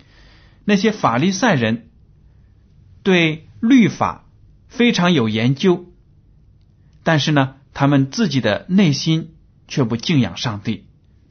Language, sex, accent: Chinese, male, native